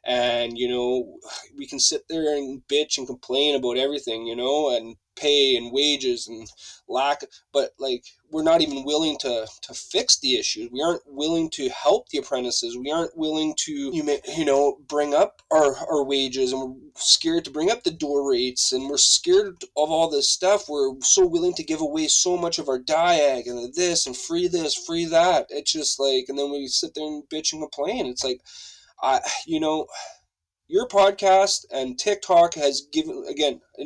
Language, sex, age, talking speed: English, male, 20-39, 195 wpm